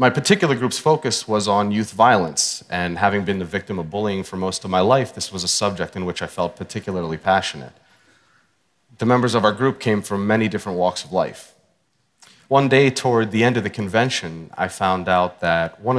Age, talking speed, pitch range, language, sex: 30-49, 205 wpm, 95-125 Hz, English, male